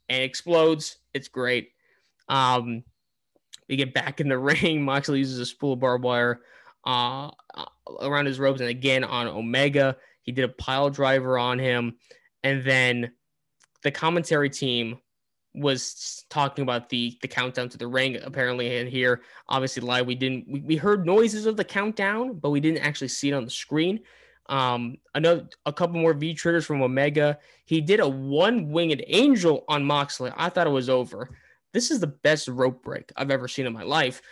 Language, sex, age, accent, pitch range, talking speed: English, male, 20-39, American, 125-160 Hz, 180 wpm